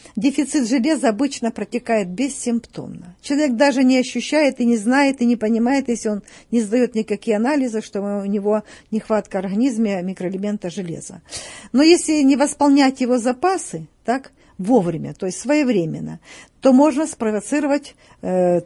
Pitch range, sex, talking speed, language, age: 205-270 Hz, female, 140 wpm, Russian, 50-69